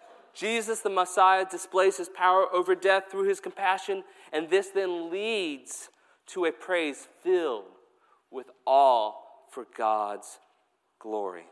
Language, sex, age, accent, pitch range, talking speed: English, male, 30-49, American, 165-255 Hz, 125 wpm